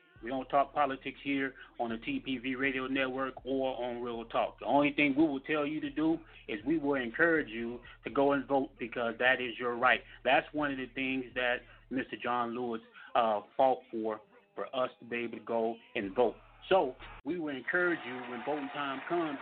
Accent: American